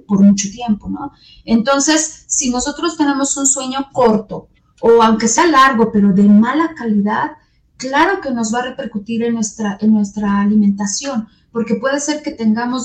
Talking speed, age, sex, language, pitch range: 160 wpm, 30-49, female, Spanish, 215-260 Hz